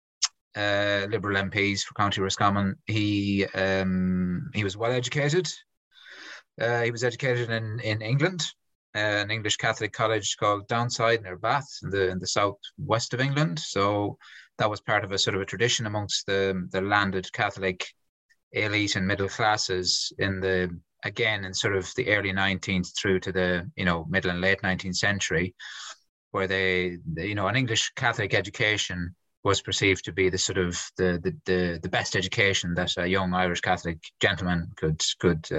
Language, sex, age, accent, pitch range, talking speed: English, male, 20-39, British, 95-115 Hz, 170 wpm